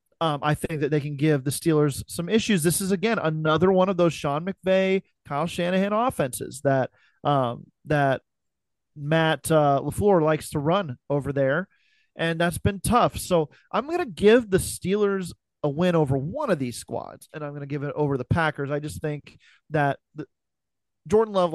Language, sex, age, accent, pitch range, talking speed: English, male, 30-49, American, 145-180 Hz, 190 wpm